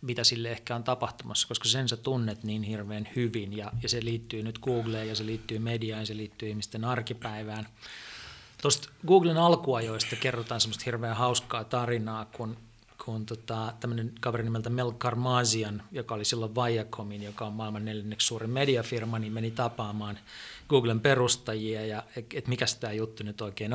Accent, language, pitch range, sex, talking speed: native, Finnish, 110-125 Hz, male, 160 wpm